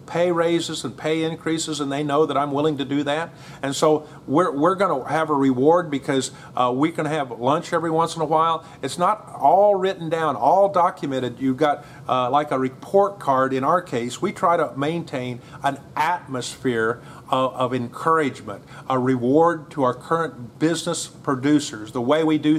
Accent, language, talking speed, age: American, English, 190 wpm, 40-59